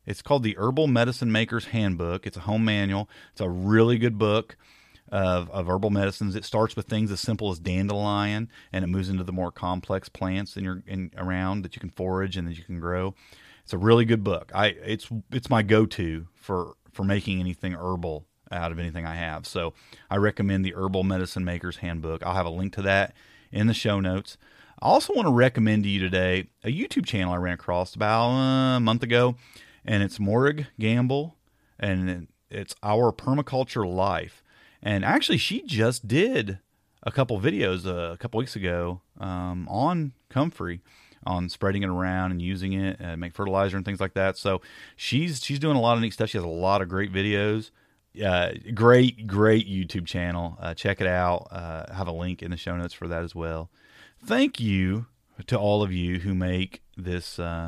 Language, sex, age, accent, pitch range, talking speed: English, male, 30-49, American, 90-110 Hz, 200 wpm